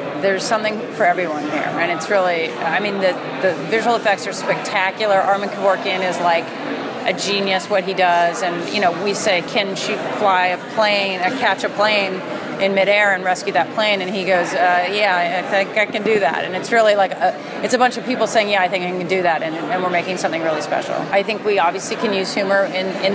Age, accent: 30-49, American